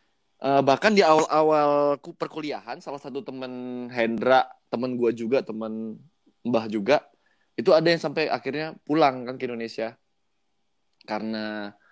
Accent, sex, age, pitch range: native, male, 20-39, 115-145 Hz